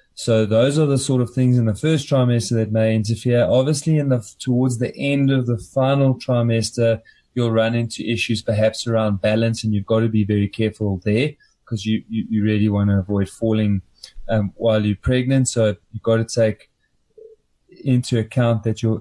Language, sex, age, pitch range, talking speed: English, male, 20-39, 110-125 Hz, 185 wpm